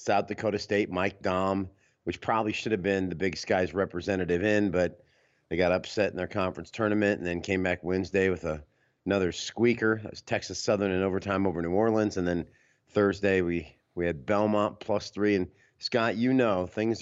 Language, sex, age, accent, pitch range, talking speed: English, male, 30-49, American, 90-110 Hz, 195 wpm